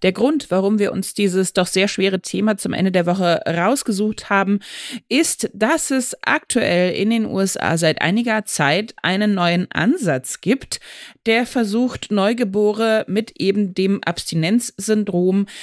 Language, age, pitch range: German, 30-49, 170-220 Hz